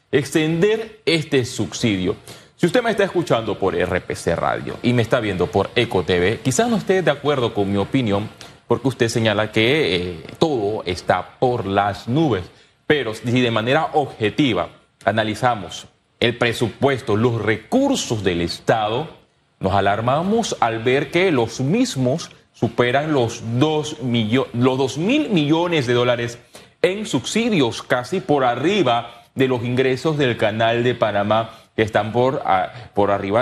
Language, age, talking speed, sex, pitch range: Spanish, 30-49, 150 wpm, male, 110-150 Hz